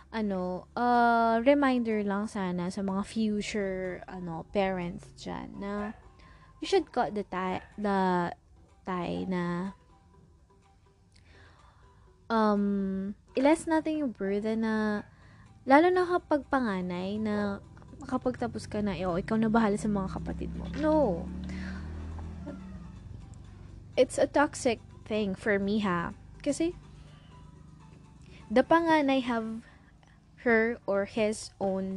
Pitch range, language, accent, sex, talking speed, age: 185-245 Hz, Filipino, native, female, 110 wpm, 20-39